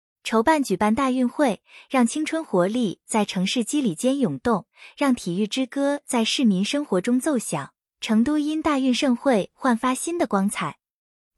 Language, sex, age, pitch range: Chinese, female, 20-39, 200-280 Hz